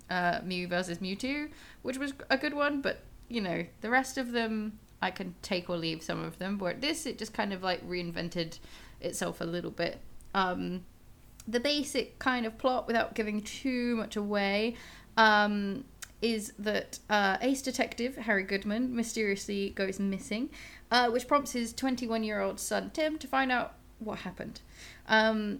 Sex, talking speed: female, 165 wpm